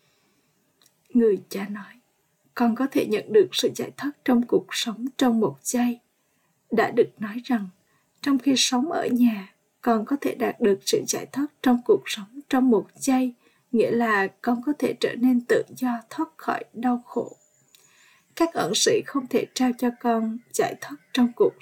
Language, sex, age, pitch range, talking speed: Vietnamese, female, 20-39, 215-270 Hz, 180 wpm